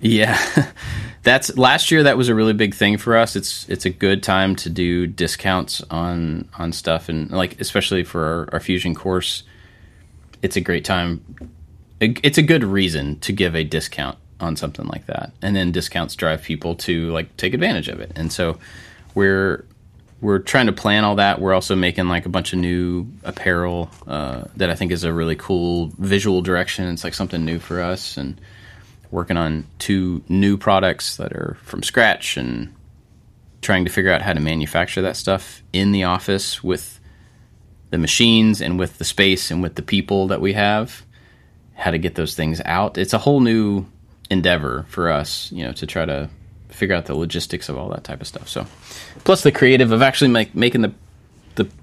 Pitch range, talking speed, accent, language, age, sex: 85-105 Hz, 195 wpm, American, English, 30-49, male